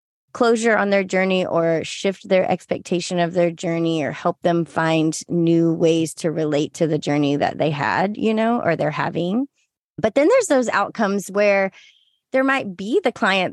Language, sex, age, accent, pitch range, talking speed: English, female, 20-39, American, 170-250 Hz, 180 wpm